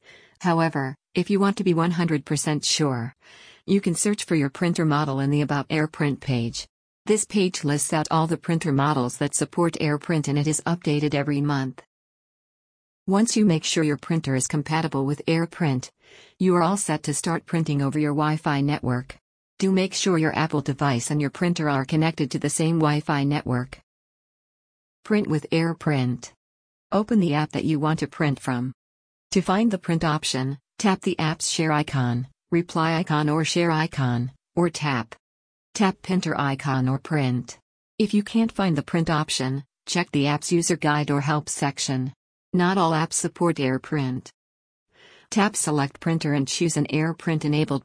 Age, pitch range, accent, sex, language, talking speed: 50-69, 140-170 Hz, American, female, English, 170 wpm